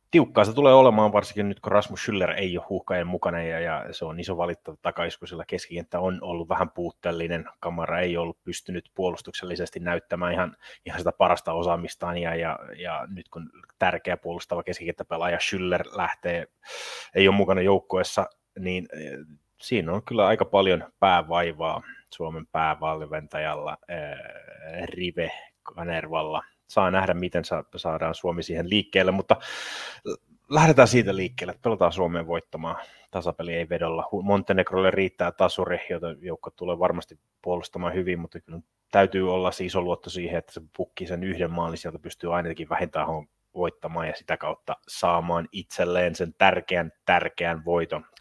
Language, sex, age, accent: Finnish, male, 30-49, native